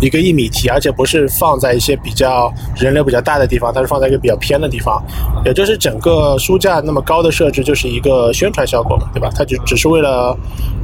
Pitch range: 120-140 Hz